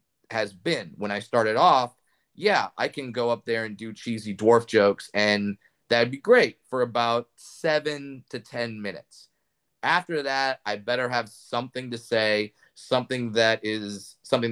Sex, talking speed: male, 160 wpm